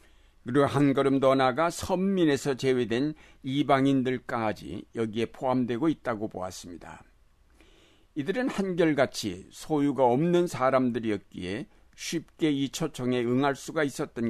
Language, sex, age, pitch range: Korean, male, 60-79, 120-150 Hz